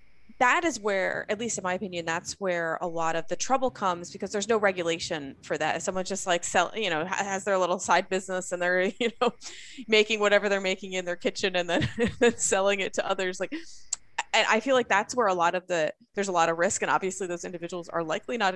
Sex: female